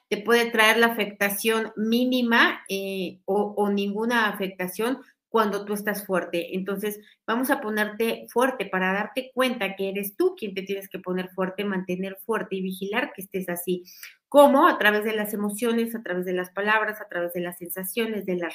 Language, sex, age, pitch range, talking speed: Spanish, female, 40-59, 190-225 Hz, 185 wpm